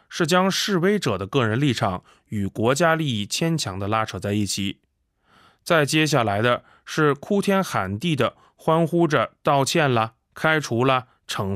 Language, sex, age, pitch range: Chinese, male, 20-39, 105-160 Hz